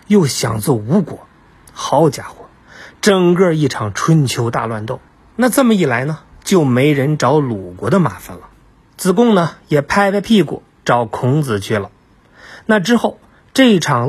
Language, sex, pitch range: Chinese, male, 125-190 Hz